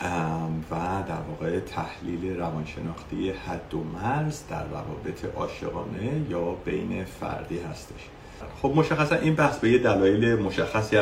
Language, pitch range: Persian, 90-110 Hz